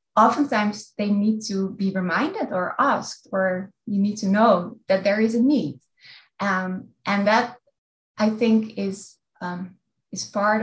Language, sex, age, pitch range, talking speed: English, female, 20-39, 190-225 Hz, 150 wpm